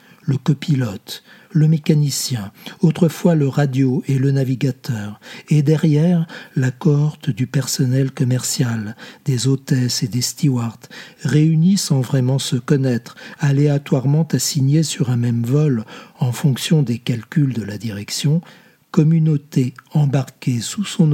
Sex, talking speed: male, 125 wpm